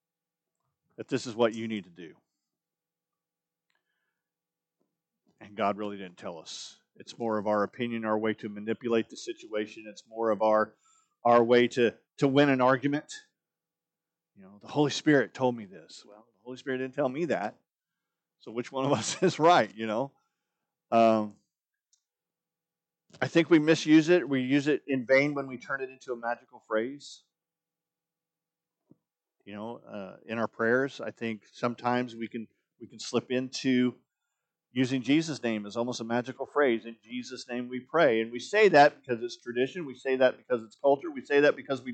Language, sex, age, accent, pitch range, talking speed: English, male, 40-59, American, 120-165 Hz, 180 wpm